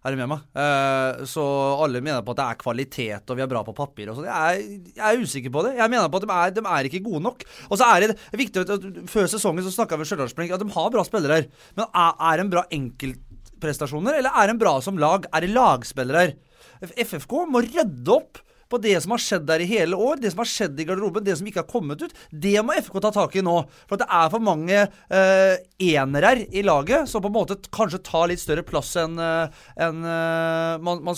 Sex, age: male, 30-49